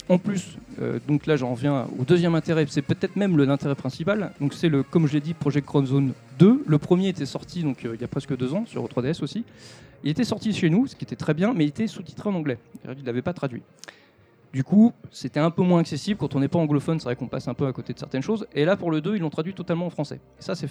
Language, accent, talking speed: French, French, 285 wpm